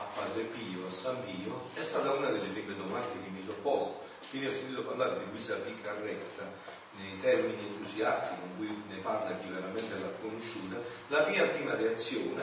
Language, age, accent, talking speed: Italian, 40-59, native, 180 wpm